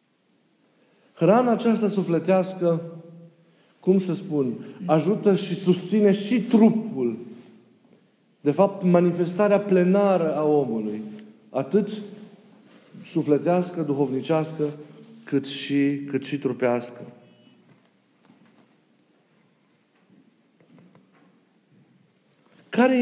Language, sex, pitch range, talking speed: Romanian, male, 145-195 Hz, 65 wpm